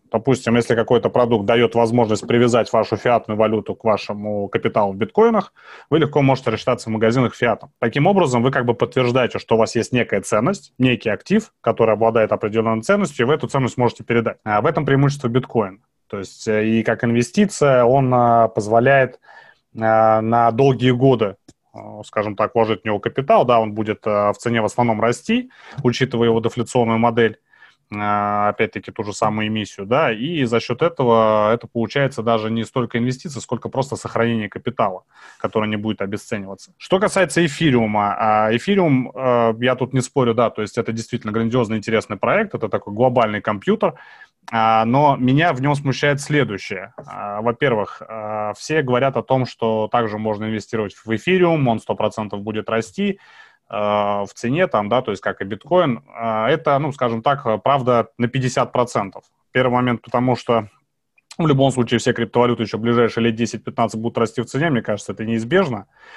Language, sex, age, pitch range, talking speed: Russian, male, 30-49, 110-130 Hz, 165 wpm